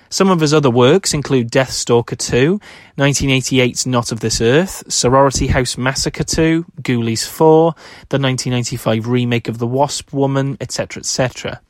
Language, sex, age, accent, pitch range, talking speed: English, male, 30-49, British, 120-140 Hz, 145 wpm